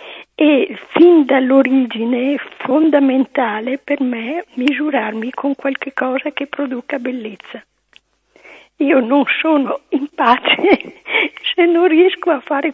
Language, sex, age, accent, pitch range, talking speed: Italian, female, 50-69, native, 250-300 Hz, 115 wpm